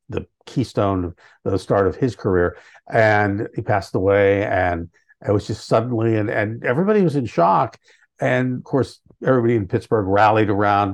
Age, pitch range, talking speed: 50-69, 105-145 Hz, 170 wpm